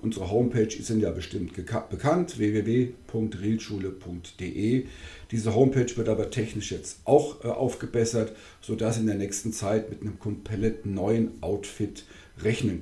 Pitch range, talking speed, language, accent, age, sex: 95-120 Hz, 140 wpm, German, German, 50-69, male